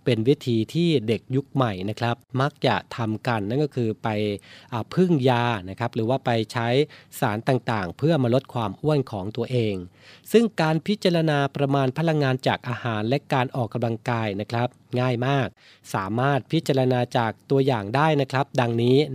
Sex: male